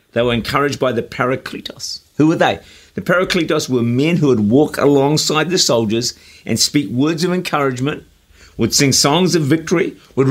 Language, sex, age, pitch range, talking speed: English, male, 50-69, 100-145 Hz, 175 wpm